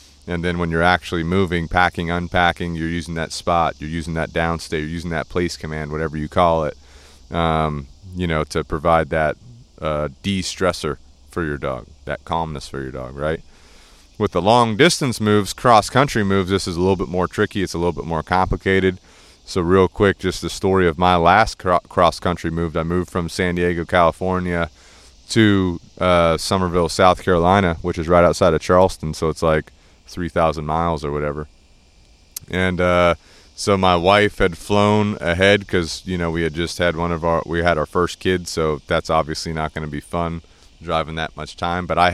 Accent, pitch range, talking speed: American, 80-95 Hz, 190 wpm